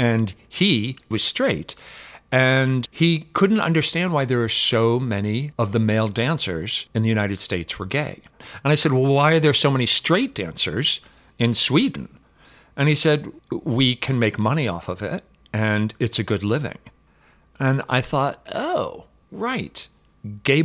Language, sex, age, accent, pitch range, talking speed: English, male, 50-69, American, 105-130 Hz, 165 wpm